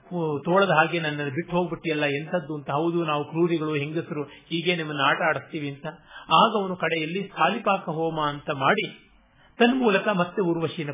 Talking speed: 135 wpm